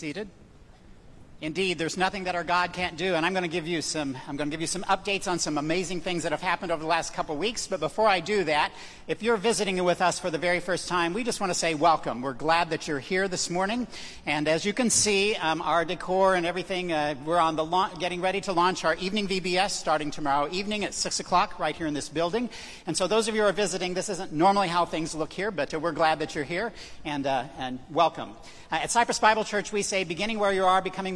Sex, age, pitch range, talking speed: male, 50-69, 160-195 Hz, 255 wpm